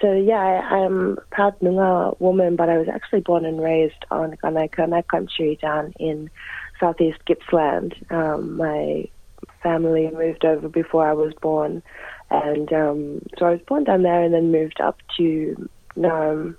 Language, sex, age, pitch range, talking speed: English, female, 20-39, 160-180 Hz, 165 wpm